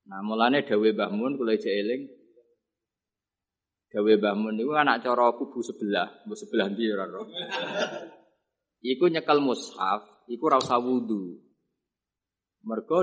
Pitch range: 105-140 Hz